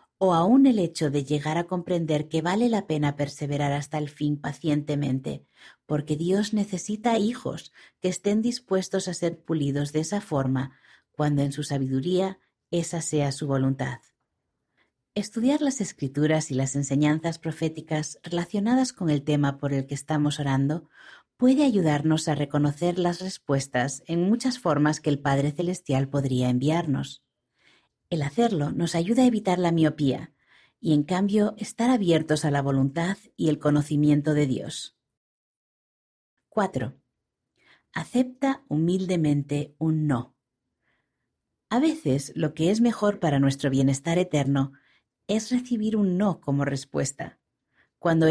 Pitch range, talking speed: 140-185 Hz, 140 wpm